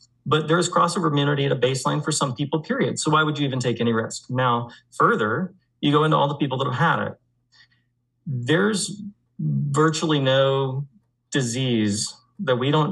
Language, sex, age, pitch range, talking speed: English, male, 30-49, 120-160 Hz, 175 wpm